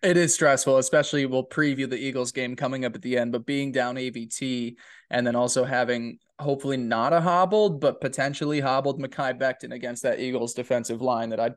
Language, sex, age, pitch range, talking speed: English, male, 20-39, 125-155 Hz, 195 wpm